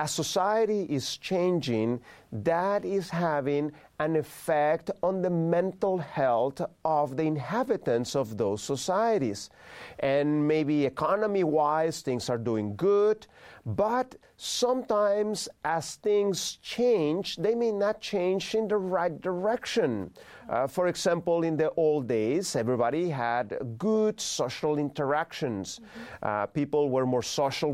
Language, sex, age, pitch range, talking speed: English, male, 40-59, 140-185 Hz, 125 wpm